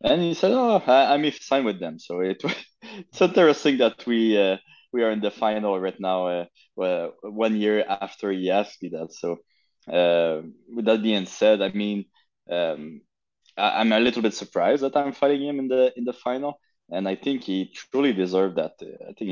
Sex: male